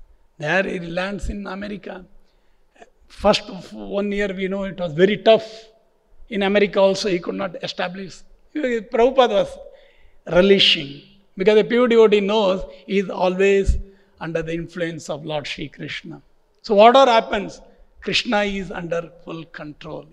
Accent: Indian